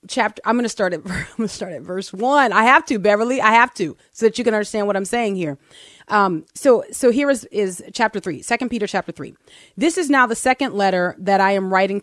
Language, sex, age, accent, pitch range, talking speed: English, female, 30-49, American, 195-255 Hz, 255 wpm